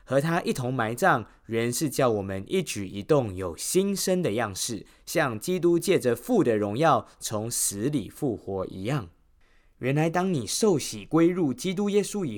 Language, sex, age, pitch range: Chinese, male, 20-39, 105-165 Hz